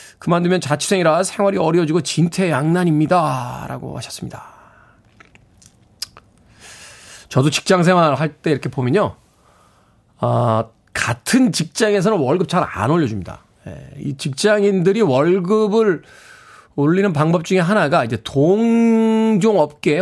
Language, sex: Korean, male